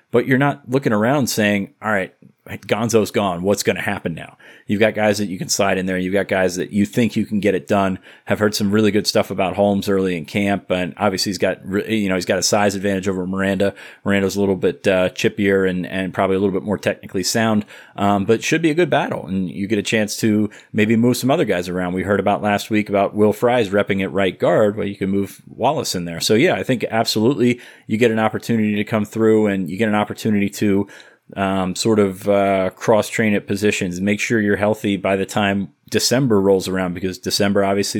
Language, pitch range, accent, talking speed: English, 95-110 Hz, American, 240 wpm